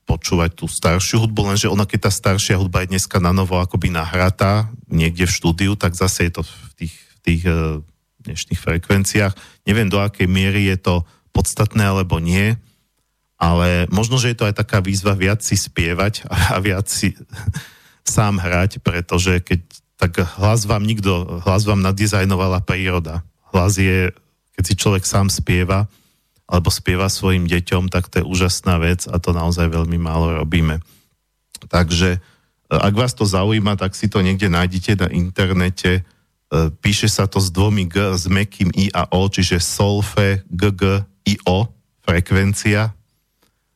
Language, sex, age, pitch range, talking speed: Slovak, male, 40-59, 85-100 Hz, 155 wpm